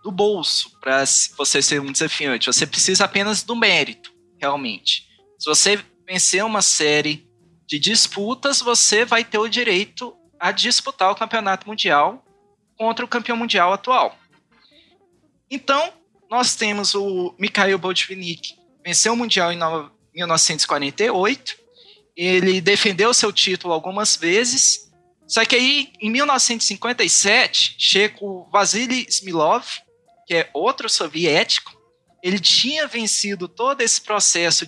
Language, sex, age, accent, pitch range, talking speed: Portuguese, male, 20-39, Brazilian, 170-235 Hz, 125 wpm